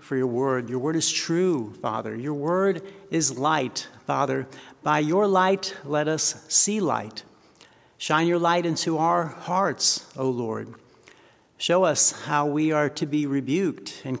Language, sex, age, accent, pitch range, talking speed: Russian, male, 60-79, American, 145-190 Hz, 155 wpm